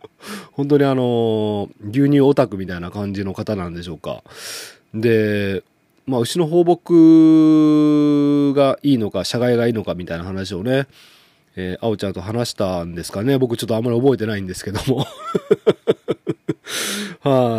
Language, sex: Japanese, male